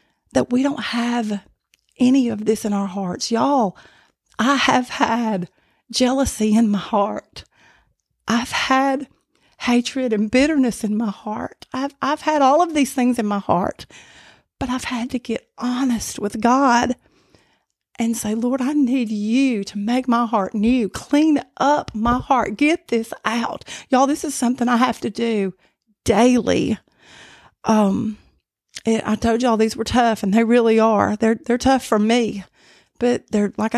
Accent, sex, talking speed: American, female, 165 wpm